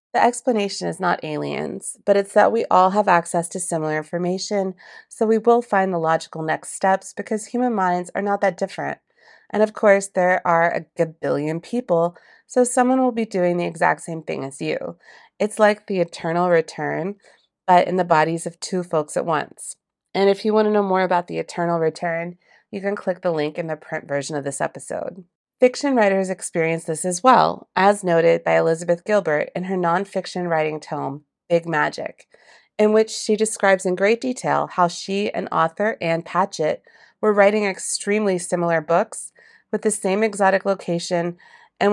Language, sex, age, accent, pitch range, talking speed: English, female, 30-49, American, 170-210 Hz, 185 wpm